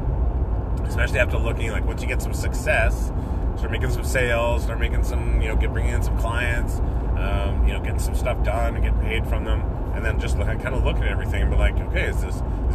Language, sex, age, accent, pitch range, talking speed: English, male, 30-49, American, 70-90 Hz, 230 wpm